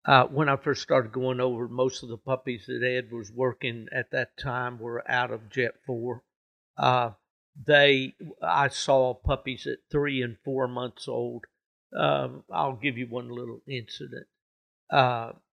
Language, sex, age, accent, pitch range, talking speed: English, male, 60-79, American, 120-140 Hz, 160 wpm